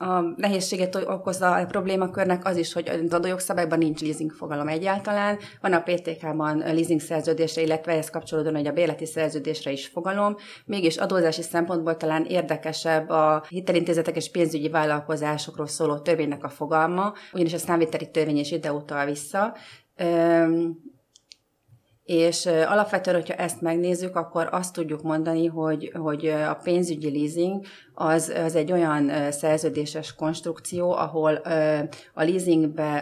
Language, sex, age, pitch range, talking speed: Hungarian, female, 30-49, 150-170 Hz, 135 wpm